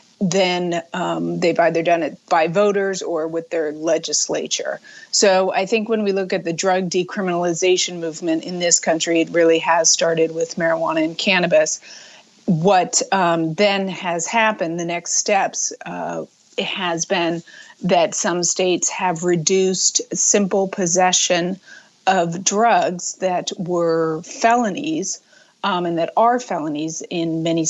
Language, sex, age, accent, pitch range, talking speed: English, female, 30-49, American, 165-195 Hz, 140 wpm